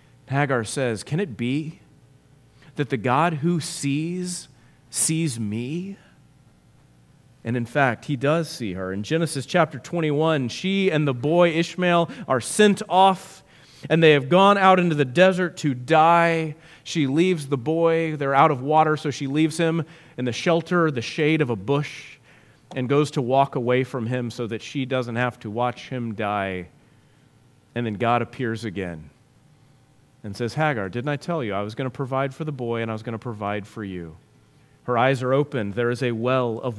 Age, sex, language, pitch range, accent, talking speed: 30-49, male, English, 120-160 Hz, American, 185 wpm